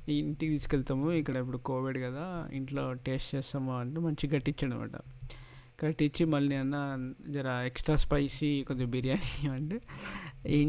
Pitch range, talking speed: 135-155 Hz, 125 wpm